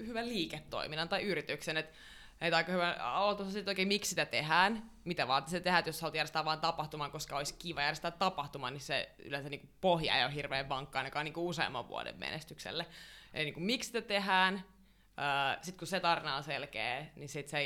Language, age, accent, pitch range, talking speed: Finnish, 20-39, native, 145-185 Hz, 185 wpm